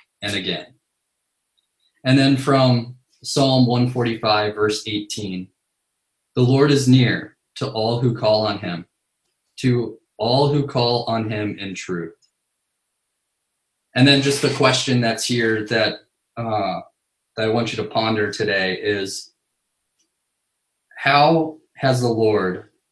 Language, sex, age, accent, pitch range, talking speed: English, male, 20-39, American, 105-120 Hz, 130 wpm